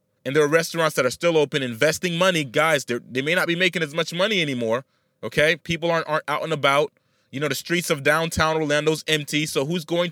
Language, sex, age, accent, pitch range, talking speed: English, male, 30-49, American, 140-175 Hz, 225 wpm